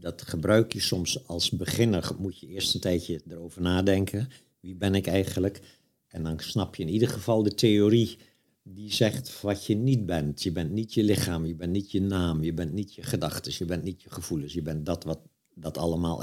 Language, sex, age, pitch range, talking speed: Dutch, male, 60-79, 85-120 Hz, 215 wpm